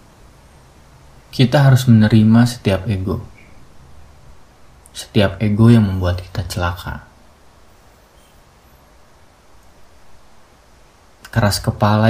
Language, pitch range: Indonesian, 95-110 Hz